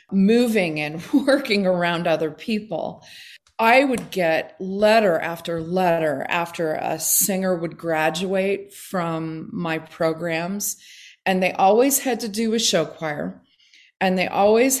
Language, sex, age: English, female, 40-59